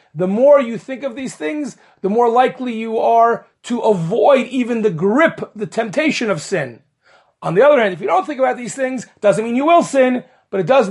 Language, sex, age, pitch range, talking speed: English, male, 30-49, 190-245 Hz, 225 wpm